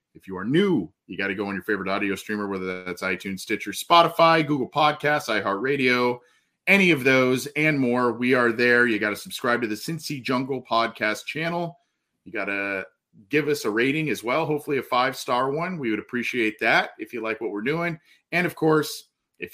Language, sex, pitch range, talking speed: English, male, 100-145 Hz, 205 wpm